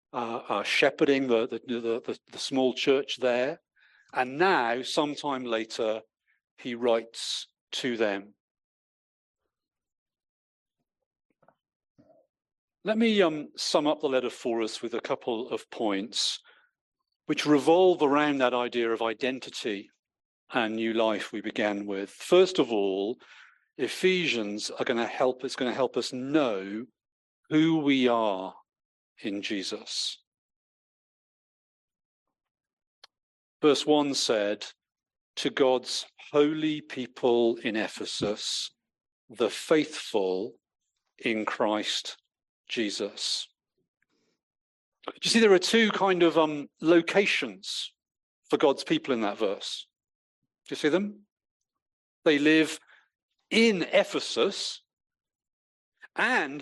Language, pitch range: English, 115-165 Hz